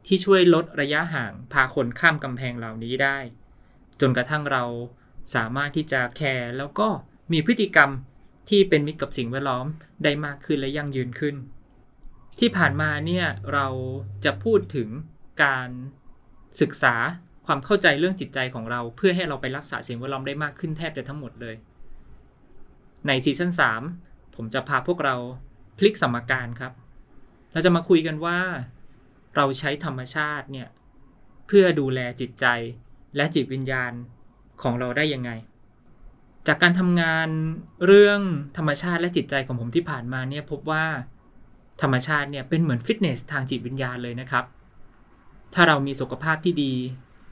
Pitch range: 125-160 Hz